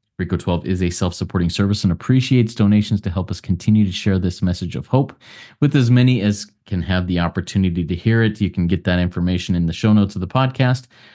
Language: English